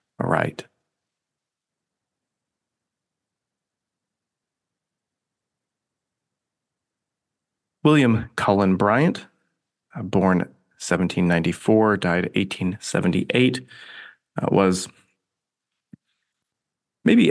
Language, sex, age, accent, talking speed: English, male, 30-49, American, 45 wpm